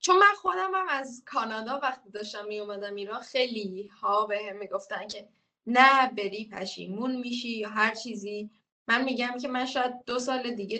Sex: female